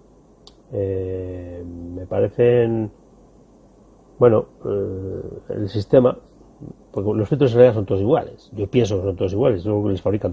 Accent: Spanish